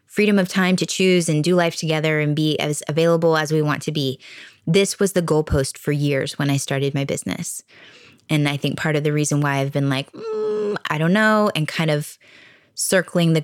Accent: American